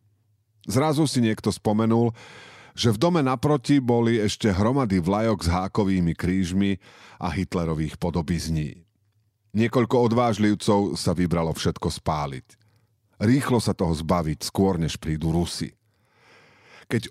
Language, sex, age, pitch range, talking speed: Slovak, male, 40-59, 85-110 Hz, 115 wpm